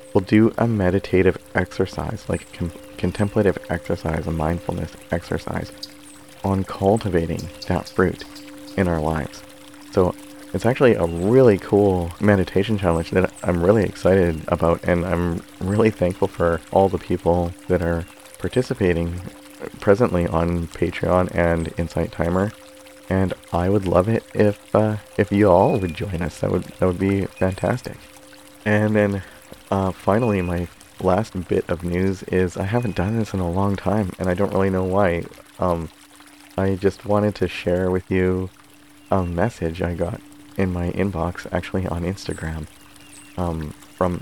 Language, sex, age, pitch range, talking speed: English, male, 30-49, 85-100 Hz, 150 wpm